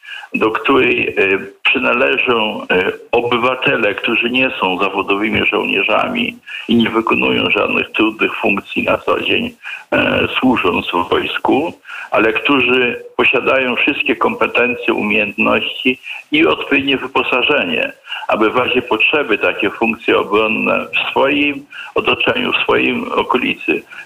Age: 50-69